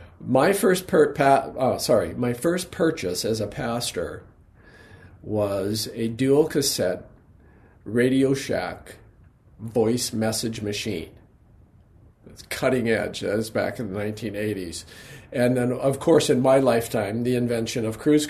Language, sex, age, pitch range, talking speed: English, male, 50-69, 110-145 Hz, 135 wpm